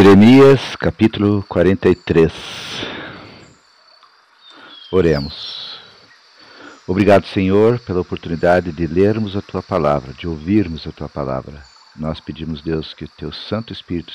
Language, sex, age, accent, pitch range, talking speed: Portuguese, male, 50-69, Brazilian, 85-105 Hz, 110 wpm